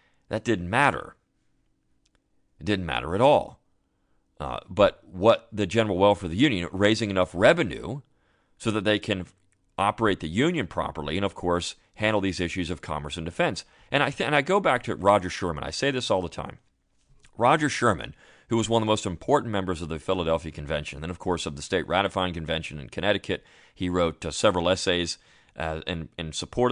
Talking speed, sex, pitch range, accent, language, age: 200 wpm, male, 85-105 Hz, American, English, 40-59